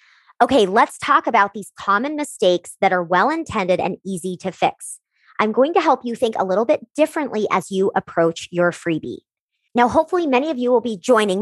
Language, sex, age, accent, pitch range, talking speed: English, male, 30-49, American, 180-225 Hz, 200 wpm